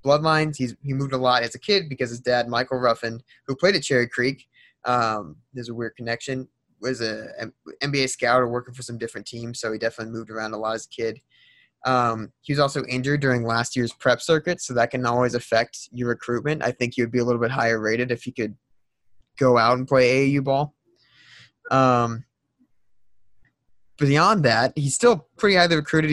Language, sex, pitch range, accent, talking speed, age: English, male, 120-140 Hz, American, 205 wpm, 20-39